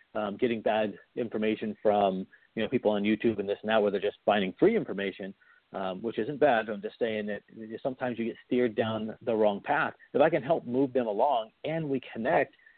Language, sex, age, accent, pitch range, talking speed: English, male, 40-59, American, 105-125 Hz, 210 wpm